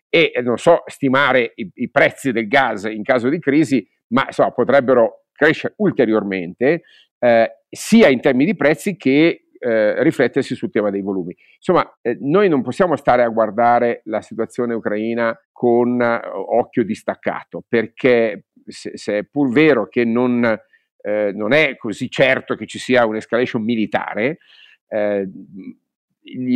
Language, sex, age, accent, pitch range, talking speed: Italian, male, 50-69, native, 110-135 Hz, 140 wpm